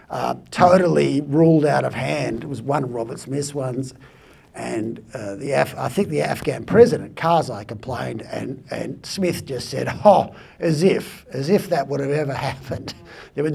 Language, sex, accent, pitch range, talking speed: English, male, Australian, 100-150 Hz, 180 wpm